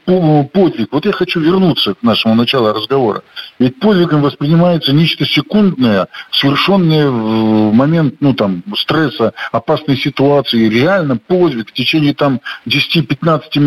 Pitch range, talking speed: 125-165 Hz, 115 wpm